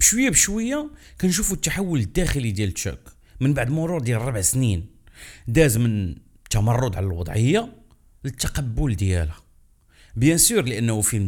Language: Arabic